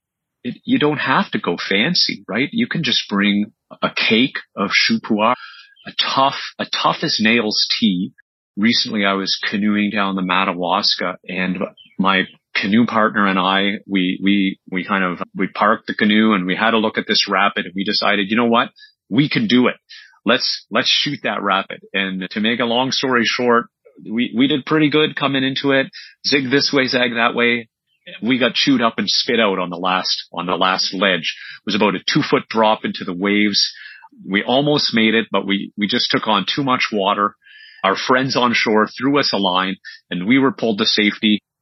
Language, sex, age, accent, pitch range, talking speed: English, male, 30-49, American, 100-135 Hz, 200 wpm